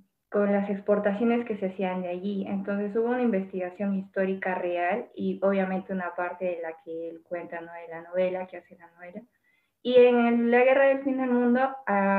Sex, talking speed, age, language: female, 195 wpm, 10-29, Spanish